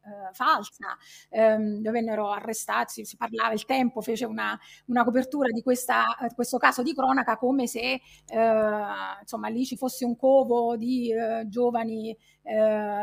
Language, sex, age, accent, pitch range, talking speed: Italian, female, 30-49, native, 230-270 Hz, 145 wpm